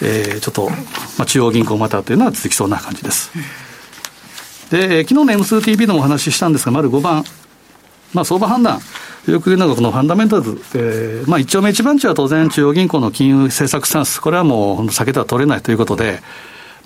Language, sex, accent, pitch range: Japanese, male, native, 120-175 Hz